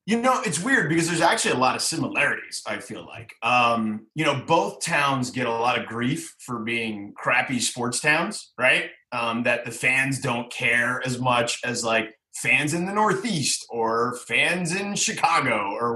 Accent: American